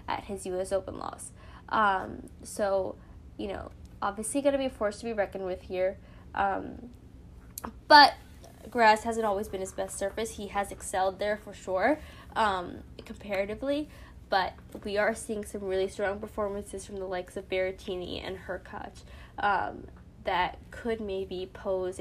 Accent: American